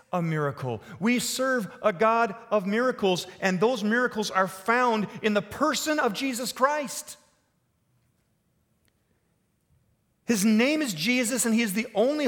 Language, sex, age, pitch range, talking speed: English, male, 40-59, 165-235 Hz, 135 wpm